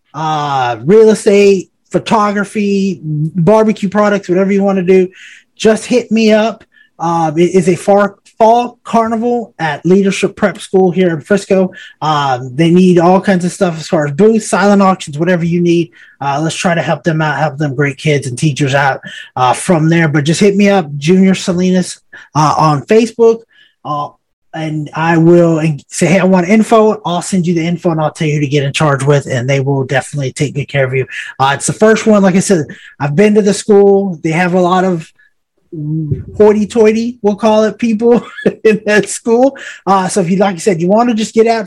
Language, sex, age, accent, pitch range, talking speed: English, male, 30-49, American, 155-210 Hz, 210 wpm